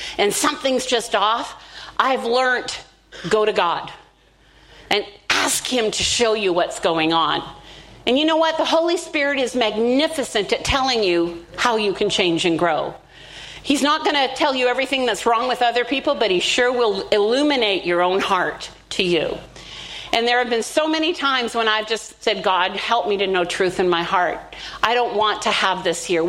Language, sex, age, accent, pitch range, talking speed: English, female, 50-69, American, 195-265 Hz, 195 wpm